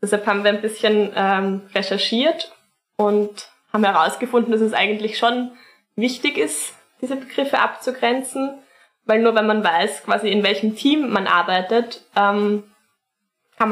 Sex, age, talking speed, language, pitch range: female, 10-29, 140 wpm, German, 205-245 Hz